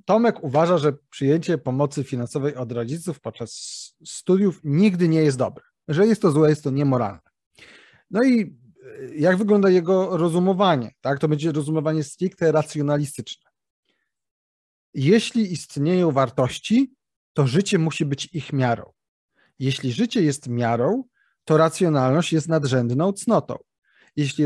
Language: Polish